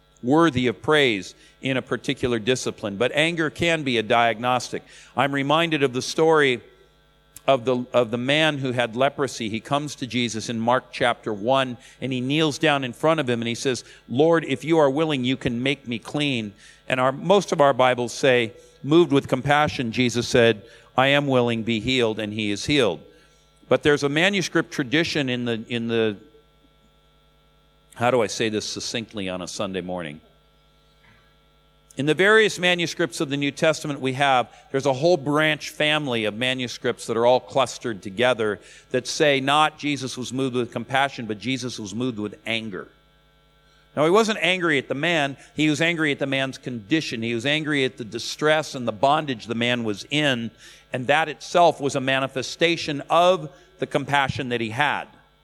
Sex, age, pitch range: male, 50-69, 120-150 Hz